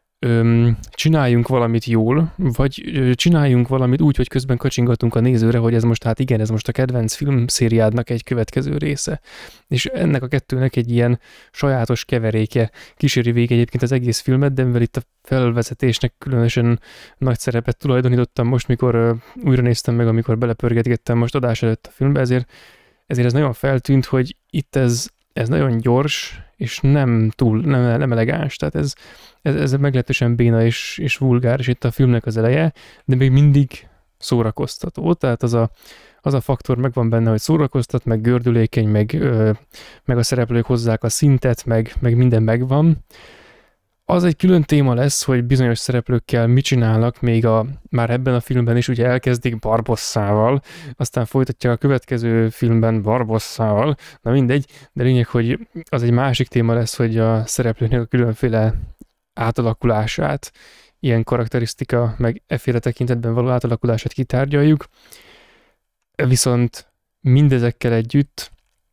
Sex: male